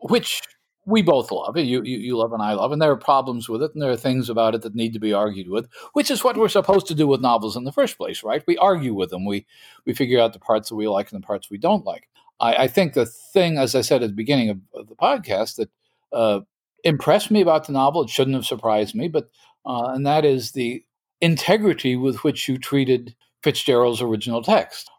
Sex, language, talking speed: male, English, 245 wpm